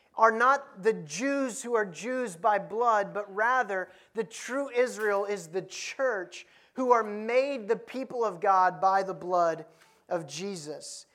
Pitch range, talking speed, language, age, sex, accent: 170-220 Hz, 155 wpm, English, 30-49, male, American